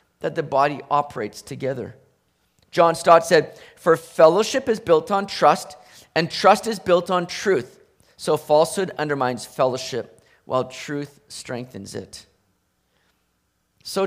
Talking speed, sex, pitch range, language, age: 125 wpm, male, 155-220 Hz, English, 40-59